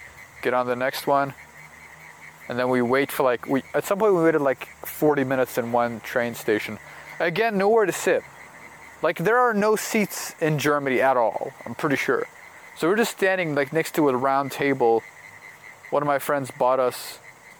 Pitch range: 120-150 Hz